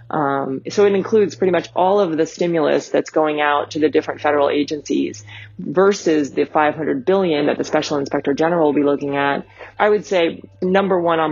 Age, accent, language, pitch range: 30-49, American, English, 135-155 Hz